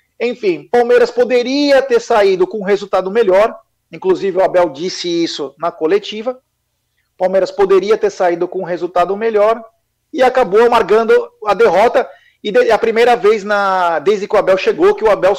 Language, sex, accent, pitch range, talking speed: Portuguese, male, Brazilian, 180-270 Hz, 160 wpm